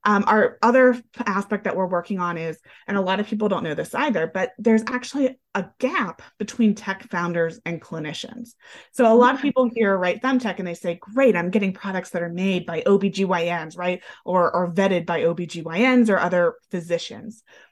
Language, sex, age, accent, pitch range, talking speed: English, female, 30-49, American, 185-245 Hz, 195 wpm